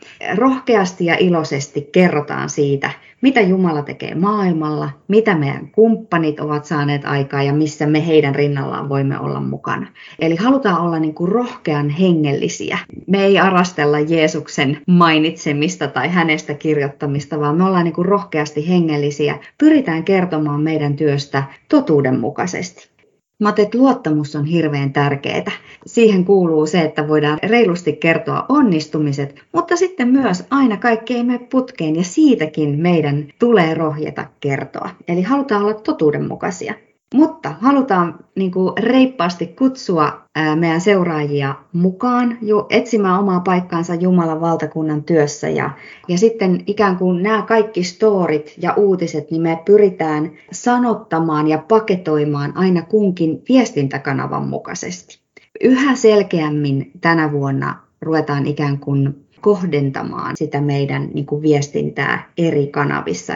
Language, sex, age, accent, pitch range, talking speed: Finnish, female, 30-49, native, 150-205 Hz, 120 wpm